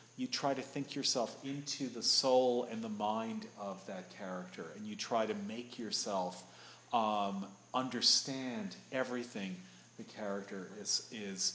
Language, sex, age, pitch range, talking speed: English, male, 40-59, 120-160 Hz, 140 wpm